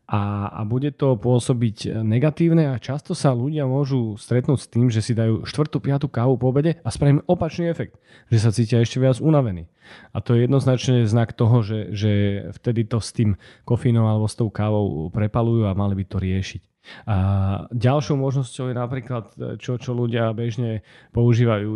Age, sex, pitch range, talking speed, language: 30-49, male, 105-130 Hz, 175 wpm, Slovak